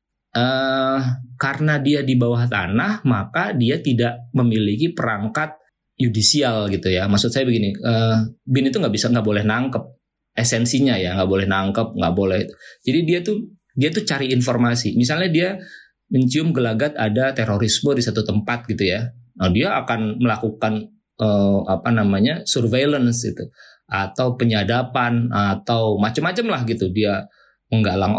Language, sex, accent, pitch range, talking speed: Indonesian, male, native, 105-130 Hz, 145 wpm